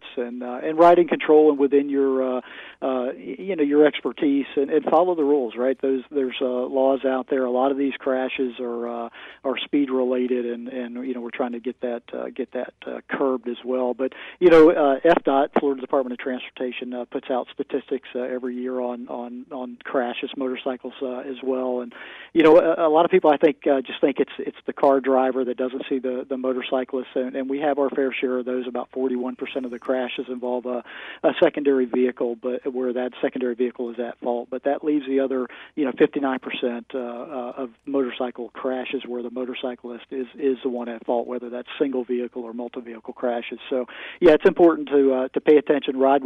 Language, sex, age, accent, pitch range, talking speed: English, male, 40-59, American, 125-140 Hz, 220 wpm